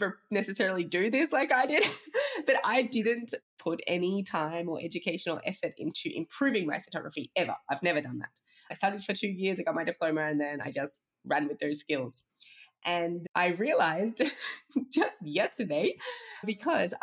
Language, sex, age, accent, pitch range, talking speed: English, female, 20-39, Australian, 165-230 Hz, 165 wpm